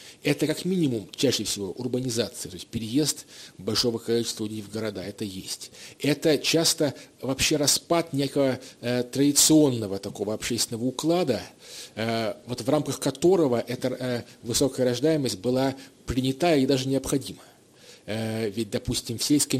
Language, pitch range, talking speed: Russian, 110-140 Hz, 140 wpm